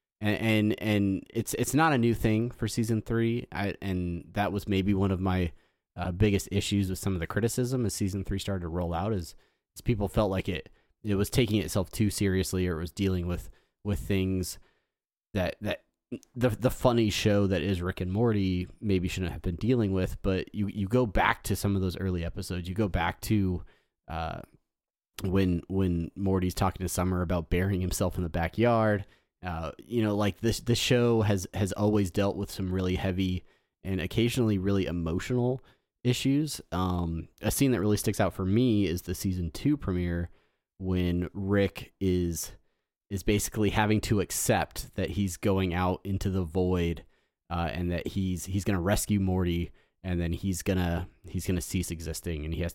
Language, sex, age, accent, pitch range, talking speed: English, male, 30-49, American, 90-105 Hz, 195 wpm